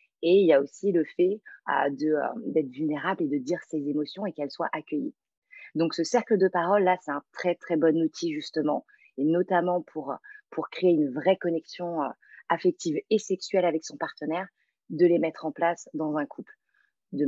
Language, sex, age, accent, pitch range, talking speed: French, female, 30-49, French, 150-200 Hz, 200 wpm